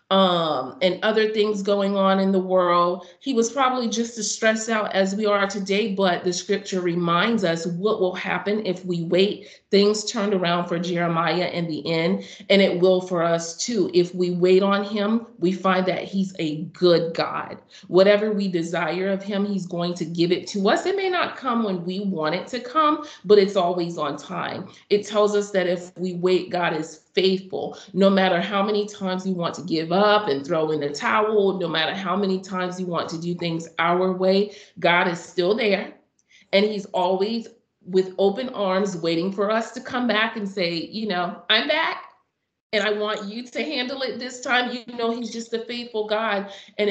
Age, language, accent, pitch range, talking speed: 40-59, English, American, 175-210 Hz, 205 wpm